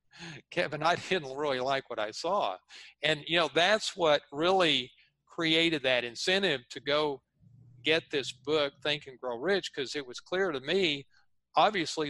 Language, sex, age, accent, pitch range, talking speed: English, male, 50-69, American, 125-155 Hz, 165 wpm